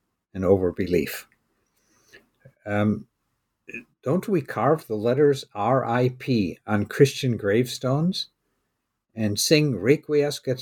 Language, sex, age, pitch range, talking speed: English, male, 60-79, 105-145 Hz, 80 wpm